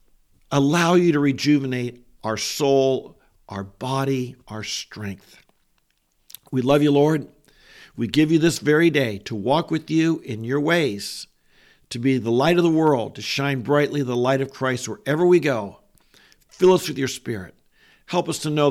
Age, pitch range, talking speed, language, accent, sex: 50-69, 115-150 Hz, 170 wpm, English, American, male